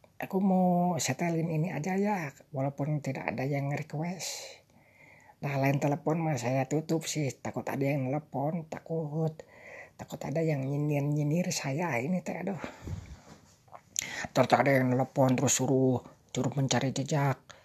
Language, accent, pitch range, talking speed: Indonesian, native, 130-165 Hz, 145 wpm